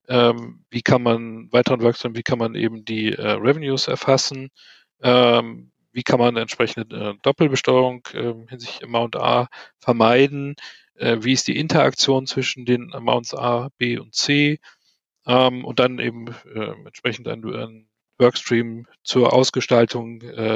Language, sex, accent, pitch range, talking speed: German, male, German, 115-130 Hz, 140 wpm